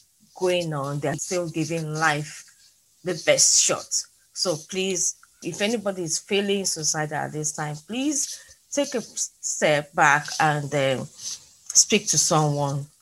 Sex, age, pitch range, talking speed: female, 30-49, 155-195 Hz, 135 wpm